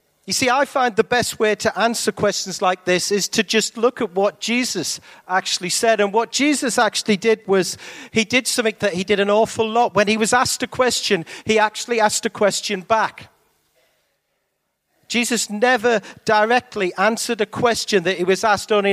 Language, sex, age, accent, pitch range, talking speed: English, male, 40-59, British, 195-235 Hz, 185 wpm